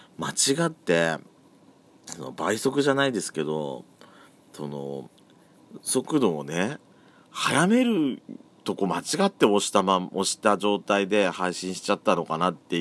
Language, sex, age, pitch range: Japanese, male, 40-59, 75-110 Hz